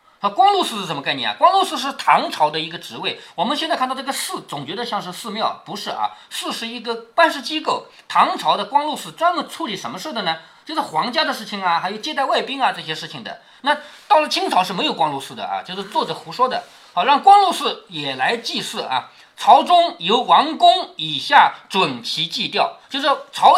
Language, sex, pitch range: Chinese, male, 210-325 Hz